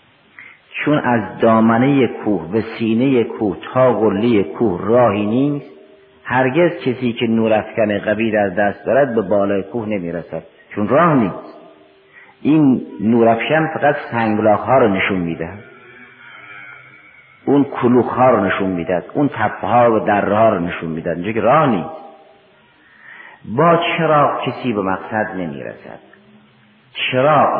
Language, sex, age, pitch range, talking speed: Persian, male, 50-69, 100-130 Hz, 125 wpm